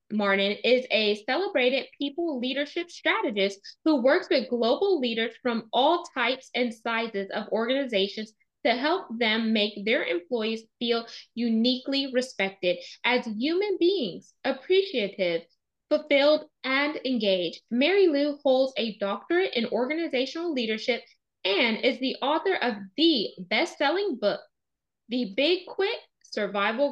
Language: English